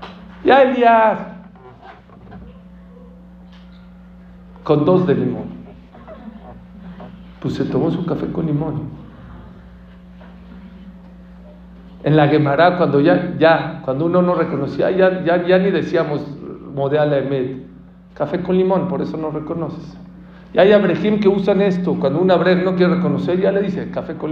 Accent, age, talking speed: Mexican, 50-69, 130 wpm